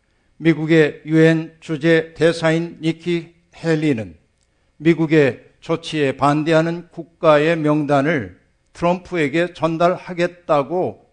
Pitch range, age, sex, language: 145-175 Hz, 60-79, male, Korean